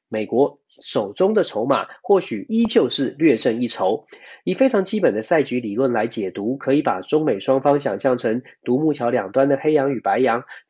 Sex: male